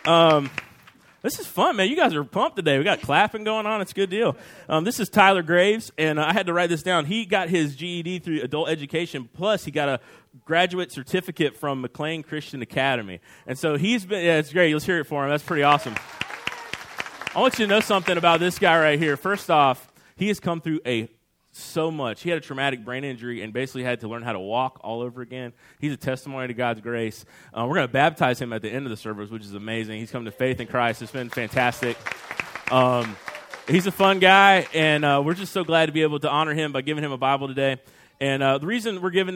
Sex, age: male, 30-49